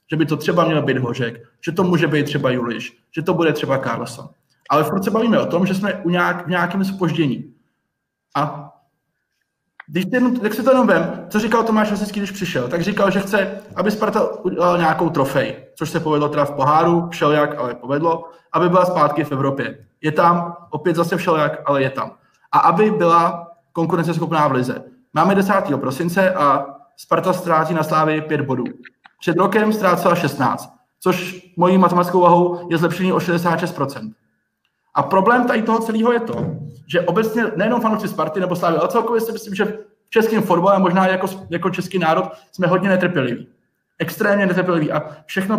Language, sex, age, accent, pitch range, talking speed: Czech, male, 20-39, native, 150-195 Hz, 185 wpm